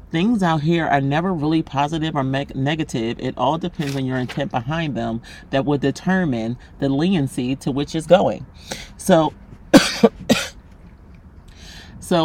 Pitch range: 135-175 Hz